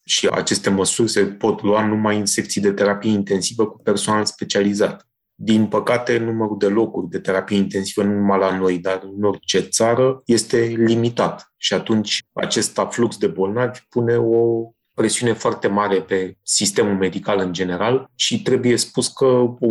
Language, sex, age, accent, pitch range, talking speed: Romanian, male, 30-49, native, 100-120 Hz, 165 wpm